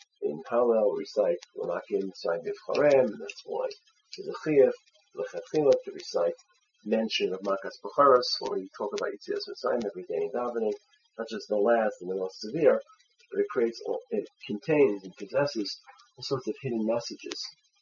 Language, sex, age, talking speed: English, male, 40-59, 160 wpm